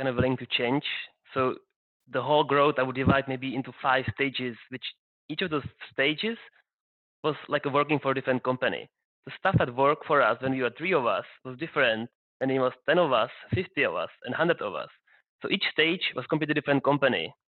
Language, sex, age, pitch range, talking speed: English, male, 20-39, 130-150 Hz, 215 wpm